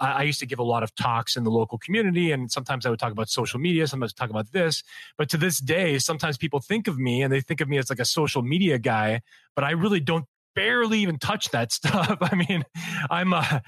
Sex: male